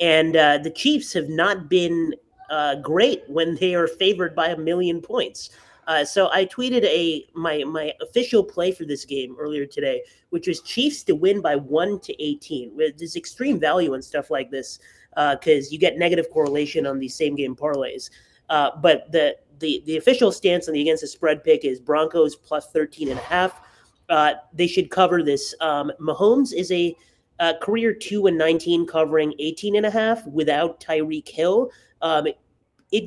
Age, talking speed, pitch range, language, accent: 30-49, 185 wpm, 150-180 Hz, English, American